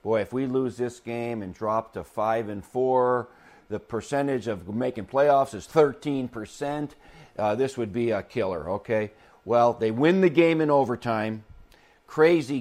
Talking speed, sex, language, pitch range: 160 wpm, male, English, 110-140 Hz